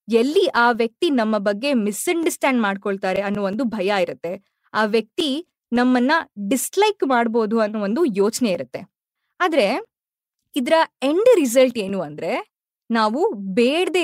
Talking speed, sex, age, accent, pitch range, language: 120 wpm, female, 20-39, native, 220-310 Hz, Kannada